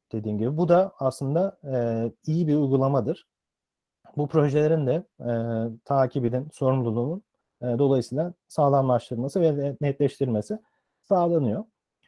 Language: Turkish